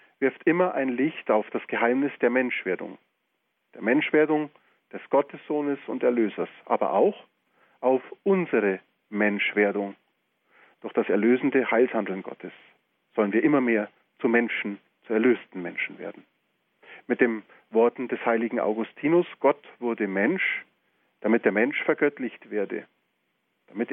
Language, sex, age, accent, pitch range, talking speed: German, male, 40-59, German, 115-155 Hz, 125 wpm